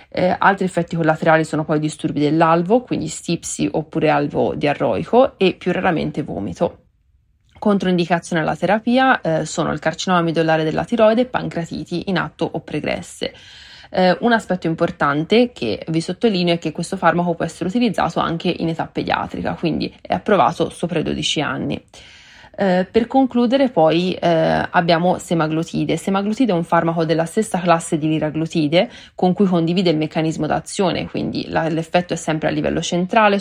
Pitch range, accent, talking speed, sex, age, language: 160-185 Hz, native, 160 wpm, female, 30-49, Italian